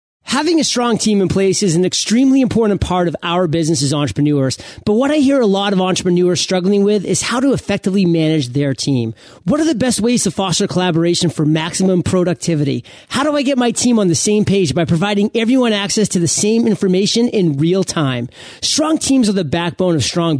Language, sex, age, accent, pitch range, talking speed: English, male, 30-49, American, 165-220 Hz, 210 wpm